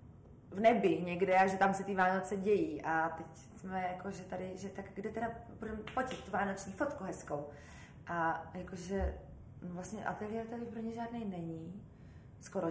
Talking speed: 165 wpm